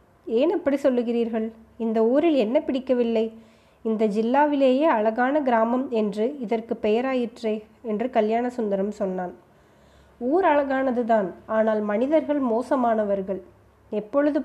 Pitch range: 215-260 Hz